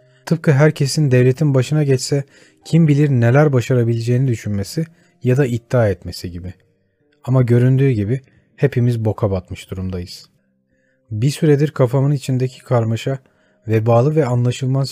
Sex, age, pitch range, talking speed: male, 30-49, 110-145 Hz, 120 wpm